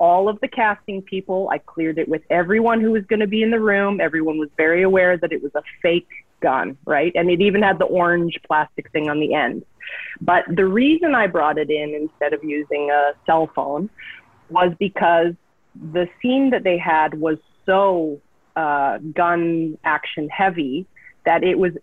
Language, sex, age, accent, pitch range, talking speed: English, female, 30-49, American, 160-215 Hz, 190 wpm